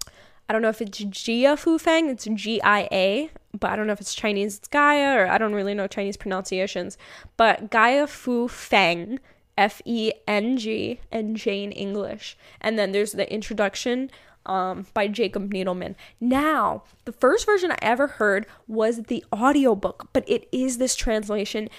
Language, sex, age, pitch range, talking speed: English, female, 10-29, 215-270 Hz, 165 wpm